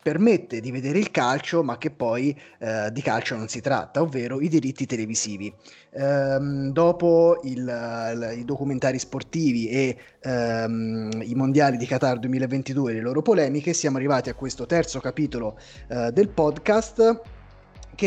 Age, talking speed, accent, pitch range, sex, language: 20-39, 145 wpm, native, 125-150 Hz, male, Italian